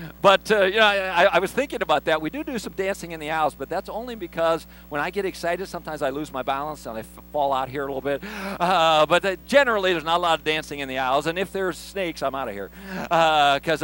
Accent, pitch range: American, 135-185 Hz